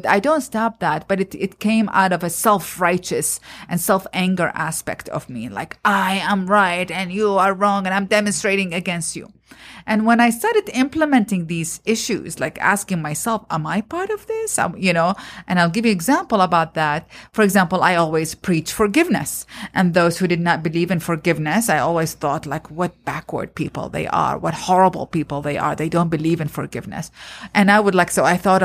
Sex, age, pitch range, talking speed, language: female, 30-49, 170-210 Hz, 200 wpm, English